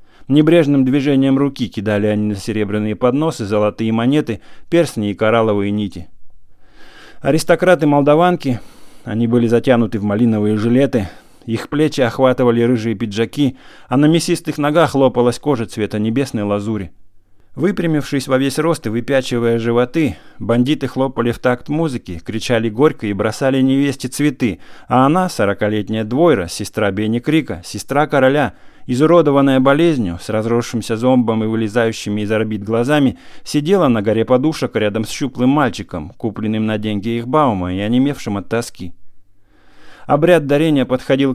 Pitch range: 105-145 Hz